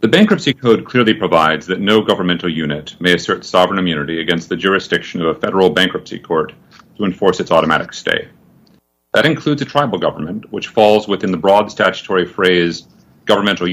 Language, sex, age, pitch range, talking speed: English, male, 40-59, 85-120 Hz, 170 wpm